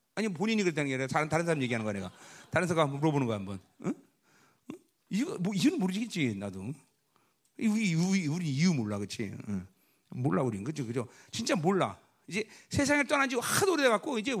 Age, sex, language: 40-59, male, Korean